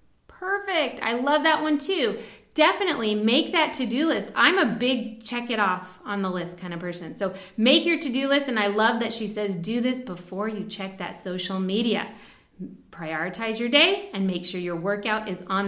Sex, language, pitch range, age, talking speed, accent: female, English, 205-280 Hz, 20-39, 180 wpm, American